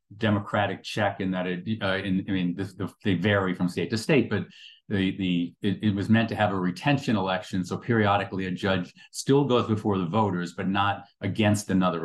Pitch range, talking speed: 90-115 Hz, 195 wpm